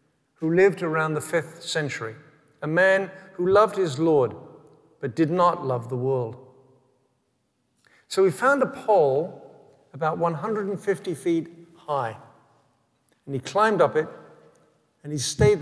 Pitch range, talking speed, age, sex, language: 135-170 Hz, 135 wpm, 60-79, male, English